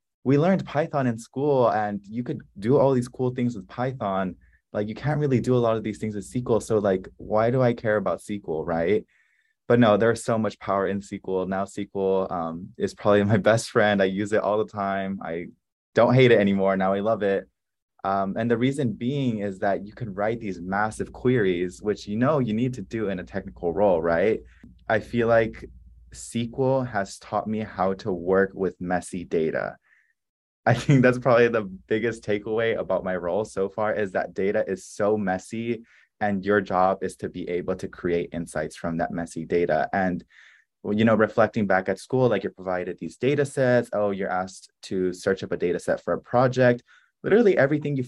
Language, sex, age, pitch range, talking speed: English, male, 20-39, 95-120 Hz, 205 wpm